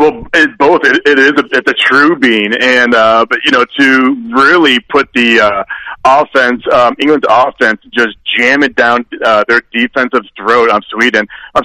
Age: 30-49